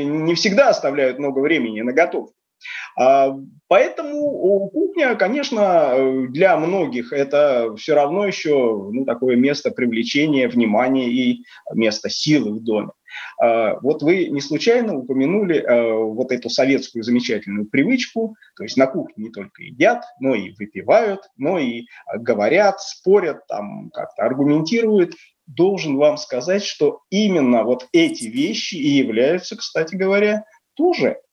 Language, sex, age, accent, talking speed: Russian, male, 20-39, native, 135 wpm